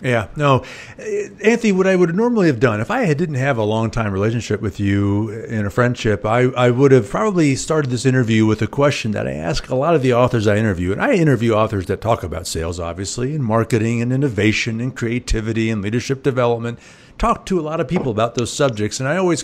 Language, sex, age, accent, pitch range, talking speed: English, male, 50-69, American, 105-140 Hz, 225 wpm